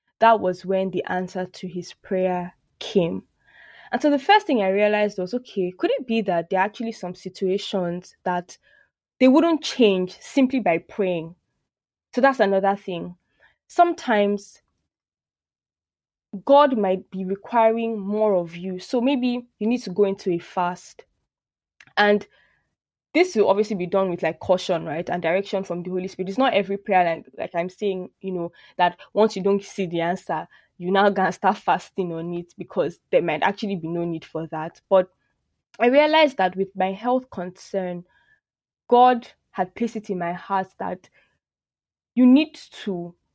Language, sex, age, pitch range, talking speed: English, female, 10-29, 180-225 Hz, 170 wpm